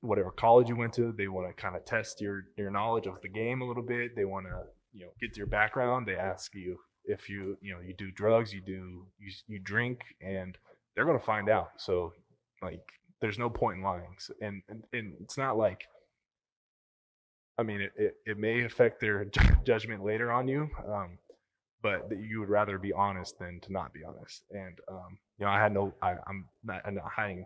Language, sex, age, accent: English, male, 20-39, American